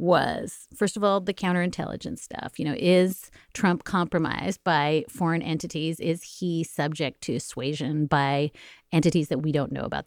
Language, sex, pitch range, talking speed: English, female, 165-235 Hz, 160 wpm